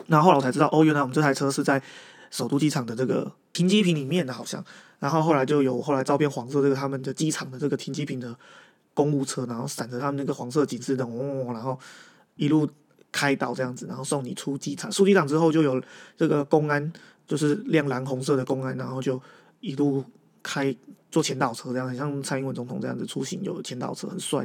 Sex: male